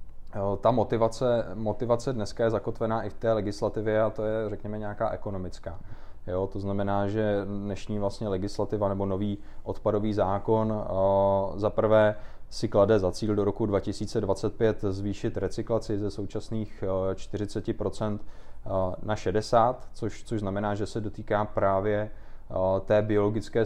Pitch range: 100-115 Hz